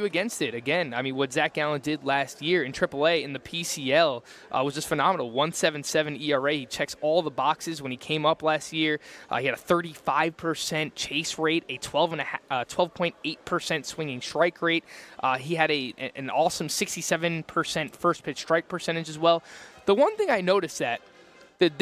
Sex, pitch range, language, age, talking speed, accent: male, 145-185 Hz, English, 20-39, 195 wpm, American